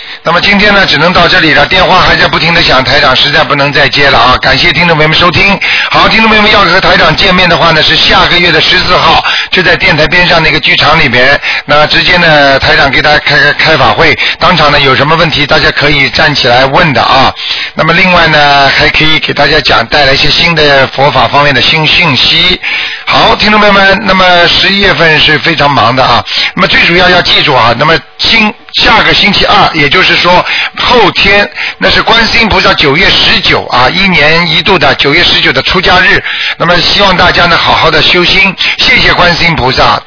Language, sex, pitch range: Chinese, male, 145-180 Hz